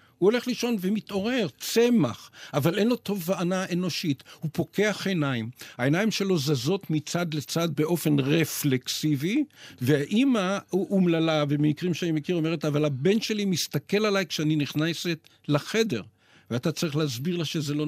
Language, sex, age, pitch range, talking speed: Hebrew, male, 50-69, 140-190 Hz, 135 wpm